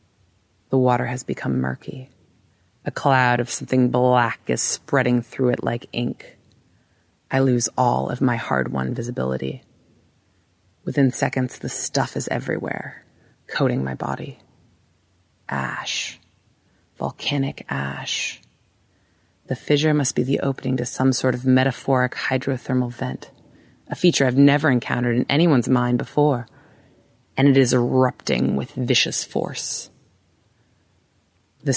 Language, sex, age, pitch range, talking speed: English, female, 30-49, 115-135 Hz, 125 wpm